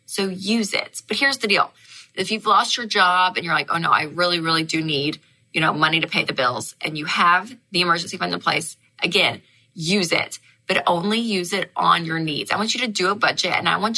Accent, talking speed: American, 245 wpm